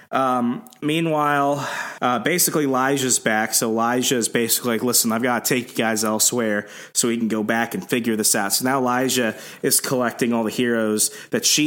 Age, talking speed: 30-49, 195 wpm